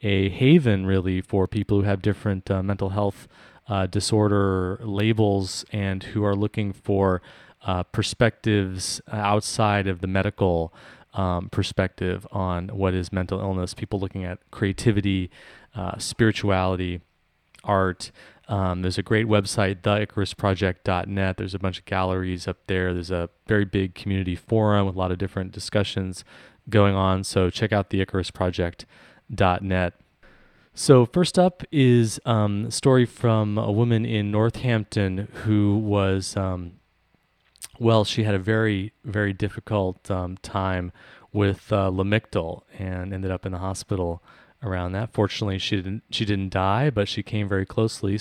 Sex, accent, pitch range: male, American, 95-105 Hz